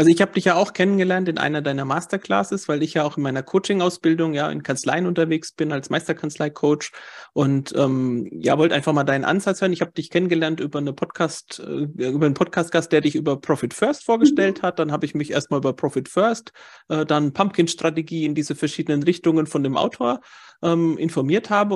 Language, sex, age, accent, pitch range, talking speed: German, male, 40-59, German, 145-180 Hz, 195 wpm